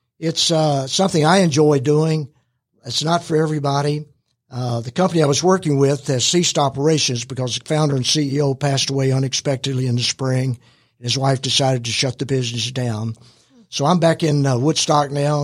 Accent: American